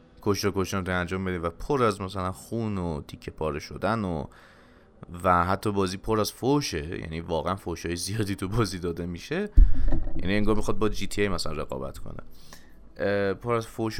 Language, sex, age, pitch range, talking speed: Persian, male, 30-49, 85-105 Hz, 180 wpm